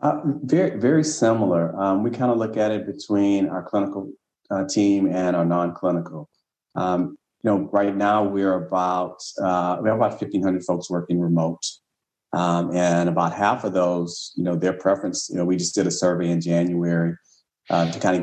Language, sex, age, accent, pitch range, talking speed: English, male, 40-59, American, 85-100 Hz, 190 wpm